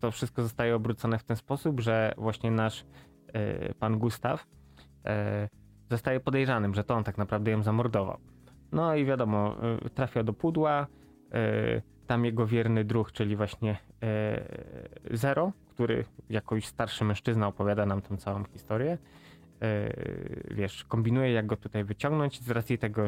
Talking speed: 135 wpm